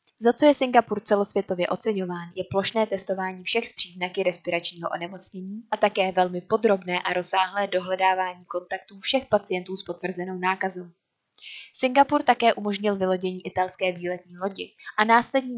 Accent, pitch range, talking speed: native, 180-210 Hz, 140 wpm